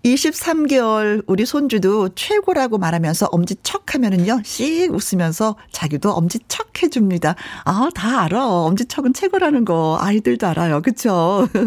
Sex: female